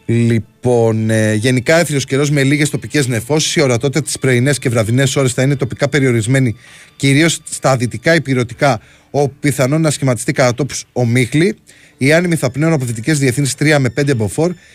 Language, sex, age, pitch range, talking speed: Greek, male, 20-39, 125-150 Hz, 170 wpm